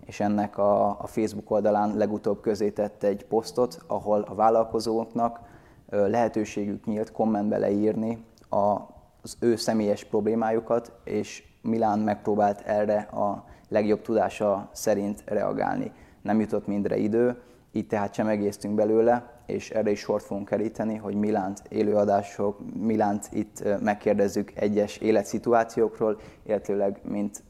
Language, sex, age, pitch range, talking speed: Hungarian, male, 20-39, 105-110 Hz, 120 wpm